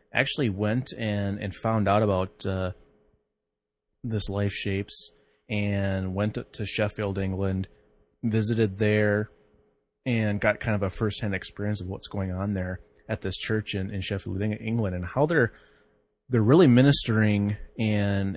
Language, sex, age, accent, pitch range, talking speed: English, male, 30-49, American, 95-110 Hz, 145 wpm